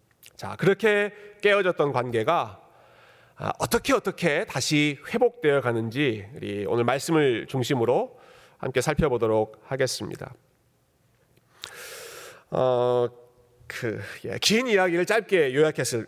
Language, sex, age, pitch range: Korean, male, 40-59, 130-195 Hz